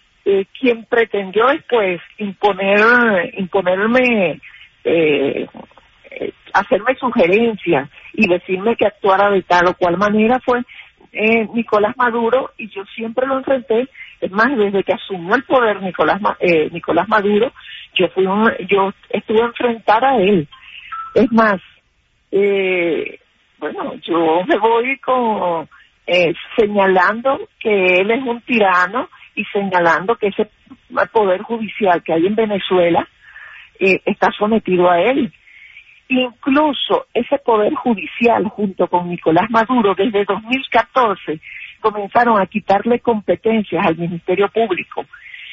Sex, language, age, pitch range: female, English, 50-69, 190-240 Hz